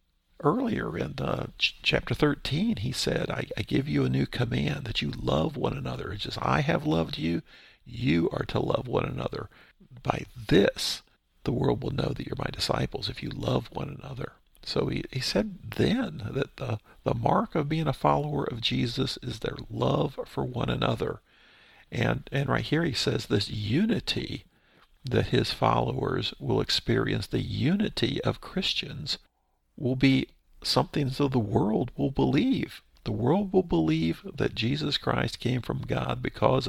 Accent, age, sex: American, 50-69, male